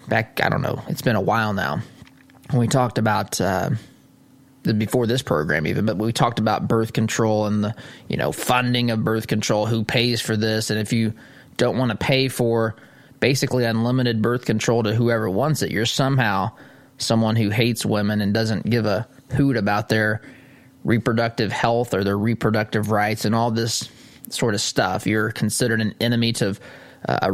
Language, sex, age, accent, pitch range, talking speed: English, male, 20-39, American, 110-135 Hz, 185 wpm